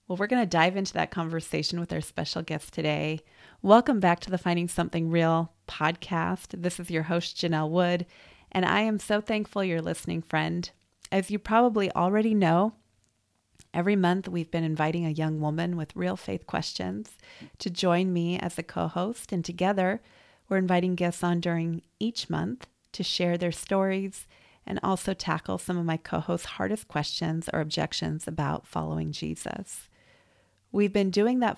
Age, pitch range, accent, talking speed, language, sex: 30-49, 155-185 Hz, American, 170 wpm, English, female